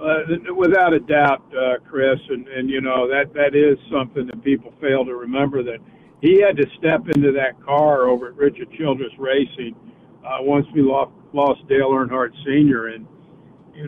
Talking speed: 180 wpm